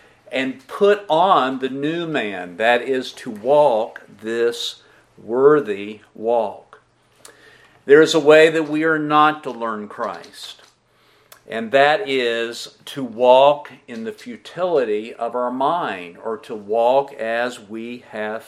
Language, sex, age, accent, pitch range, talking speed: English, male, 50-69, American, 120-155 Hz, 135 wpm